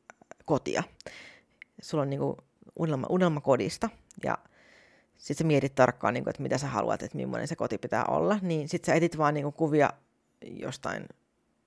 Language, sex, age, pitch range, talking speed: Finnish, female, 30-49, 155-200 Hz, 160 wpm